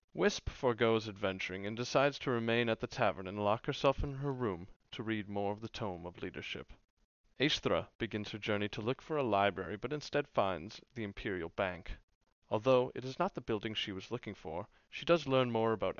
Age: 30-49